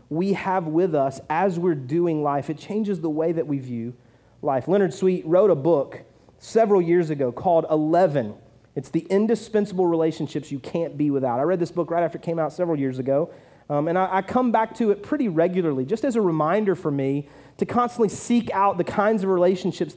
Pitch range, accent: 145-205 Hz, American